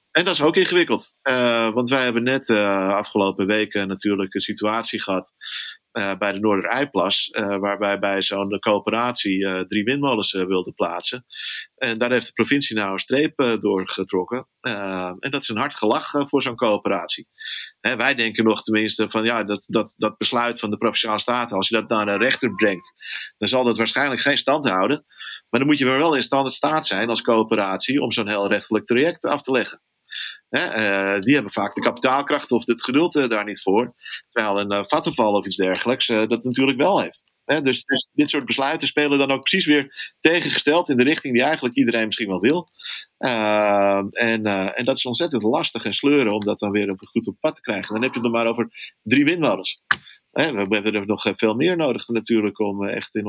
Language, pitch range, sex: Dutch, 100-125 Hz, male